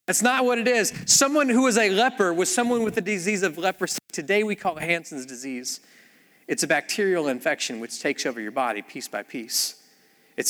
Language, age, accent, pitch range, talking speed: English, 30-49, American, 130-170 Hz, 205 wpm